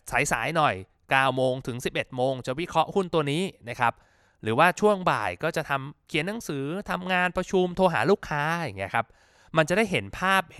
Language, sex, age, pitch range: Thai, male, 20-39, 120-165 Hz